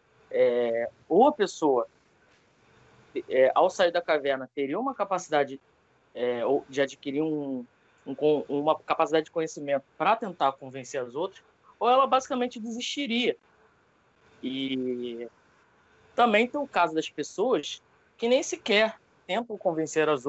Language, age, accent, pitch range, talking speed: Portuguese, 20-39, Brazilian, 130-165 Hz, 110 wpm